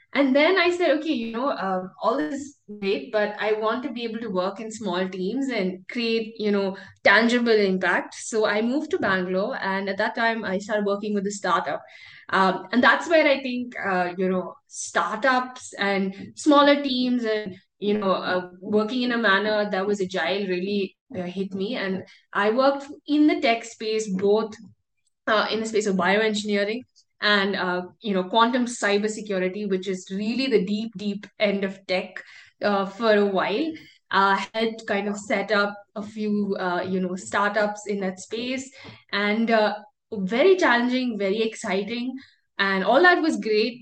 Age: 20-39